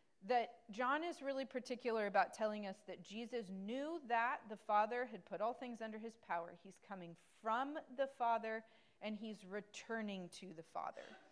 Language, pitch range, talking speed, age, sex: English, 195-255 Hz, 170 wpm, 40-59, female